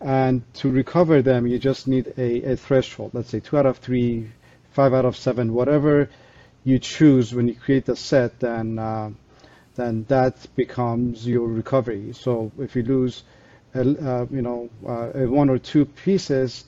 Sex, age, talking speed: male, 40-59, 175 wpm